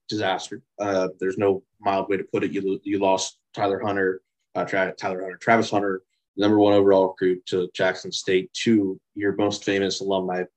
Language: English